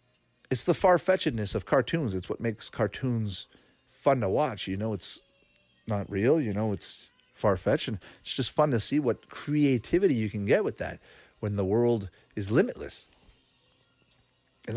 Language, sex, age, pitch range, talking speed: English, male, 40-59, 100-150 Hz, 165 wpm